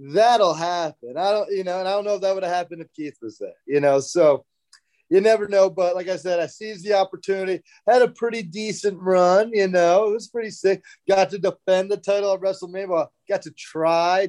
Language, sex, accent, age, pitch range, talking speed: English, male, American, 30-49, 155-200 Hz, 230 wpm